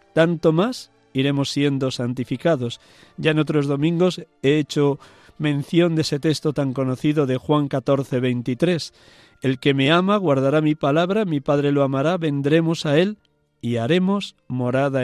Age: 50-69